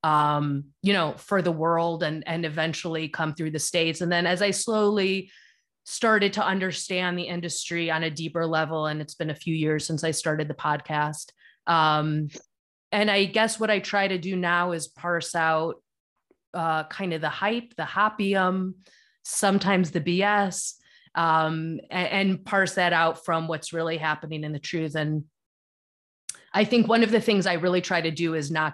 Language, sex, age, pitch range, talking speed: English, female, 30-49, 155-190 Hz, 185 wpm